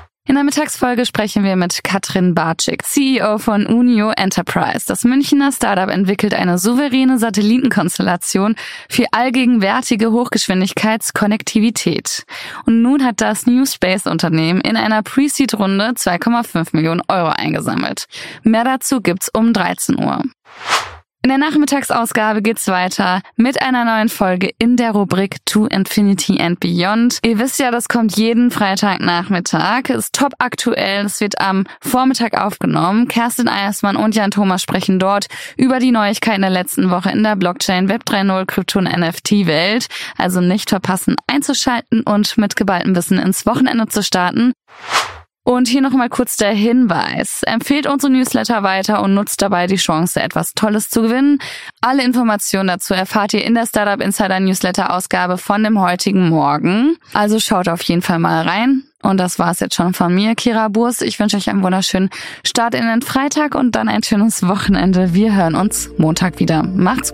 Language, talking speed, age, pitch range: German, 160 wpm, 20-39, 190-245 Hz